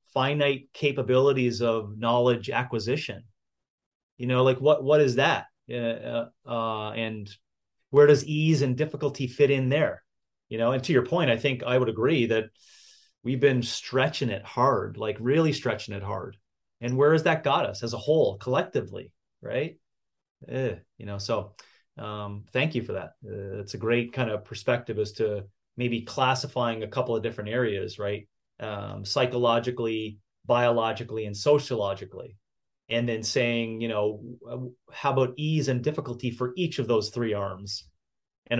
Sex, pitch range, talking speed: male, 110-140 Hz, 165 wpm